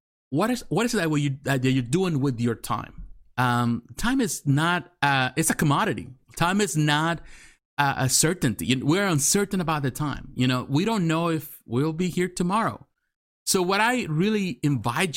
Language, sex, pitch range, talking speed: English, male, 130-170 Hz, 180 wpm